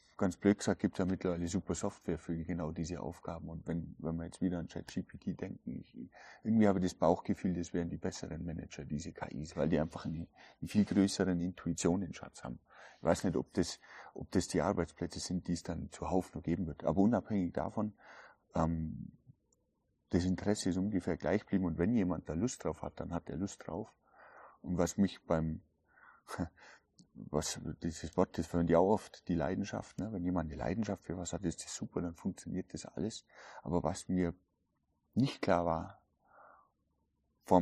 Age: 30-49